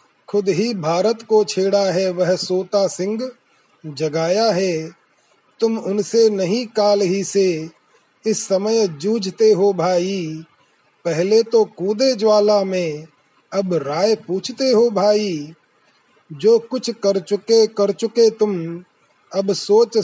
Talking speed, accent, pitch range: 125 wpm, native, 185-215 Hz